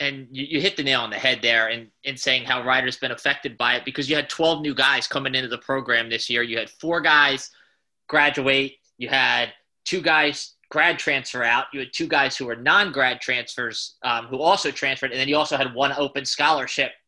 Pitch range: 130-150 Hz